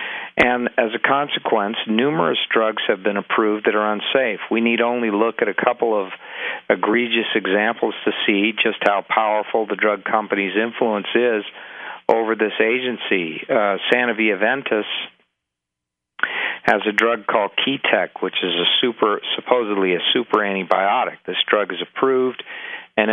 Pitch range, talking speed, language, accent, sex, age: 100-115 Hz, 145 wpm, English, American, male, 50-69